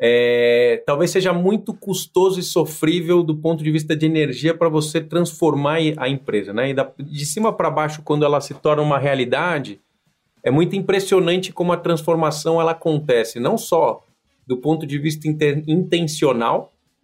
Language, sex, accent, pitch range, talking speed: Portuguese, male, Brazilian, 150-180 Hz, 165 wpm